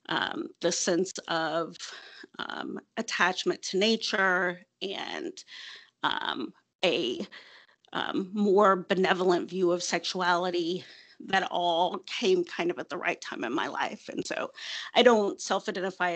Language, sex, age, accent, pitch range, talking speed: English, female, 40-59, American, 180-215 Hz, 125 wpm